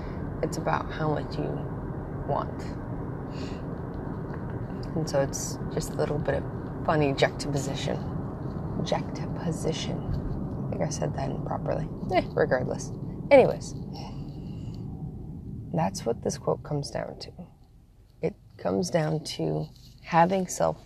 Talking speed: 110 wpm